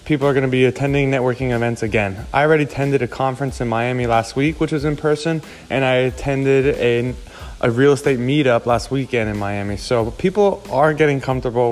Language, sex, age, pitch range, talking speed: English, male, 20-39, 120-145 Hz, 200 wpm